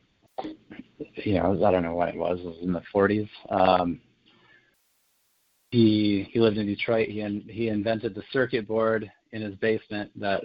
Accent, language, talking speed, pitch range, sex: American, English, 170 wpm, 90-110 Hz, male